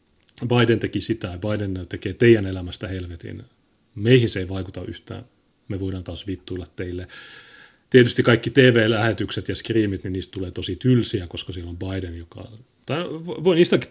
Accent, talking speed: native, 160 wpm